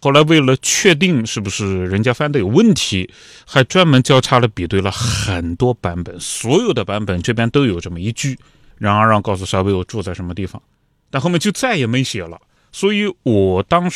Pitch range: 100-145 Hz